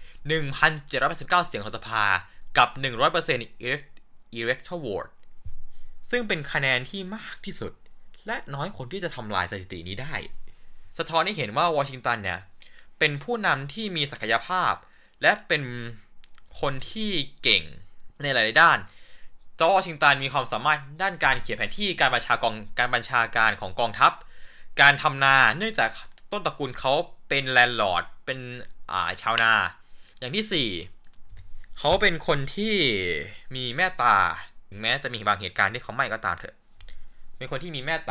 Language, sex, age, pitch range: Thai, male, 20-39, 105-160 Hz